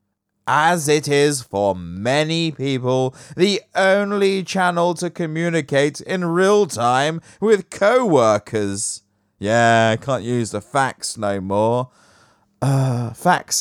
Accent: British